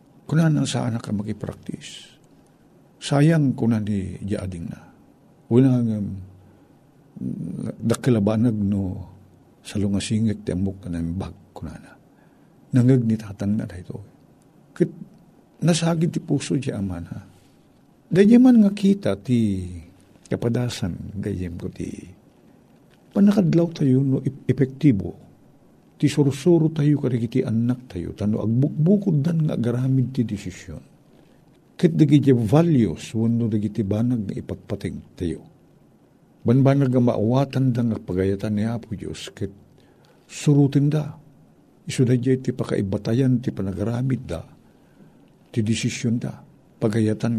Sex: male